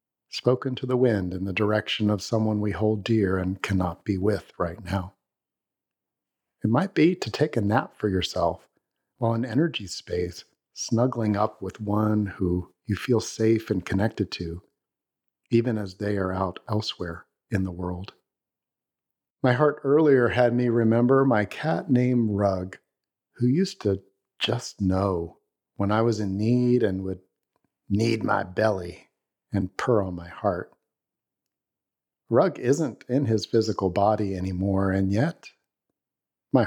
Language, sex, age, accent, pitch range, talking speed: English, male, 50-69, American, 95-120 Hz, 150 wpm